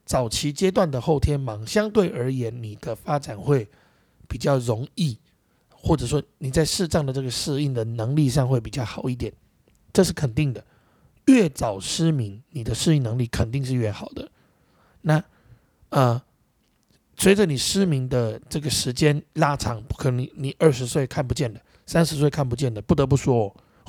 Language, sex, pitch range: Chinese, male, 115-145 Hz